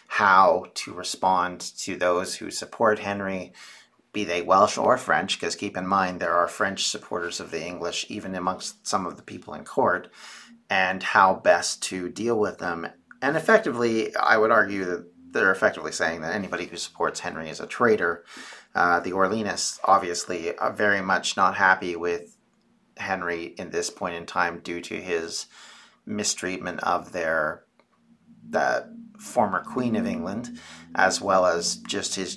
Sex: male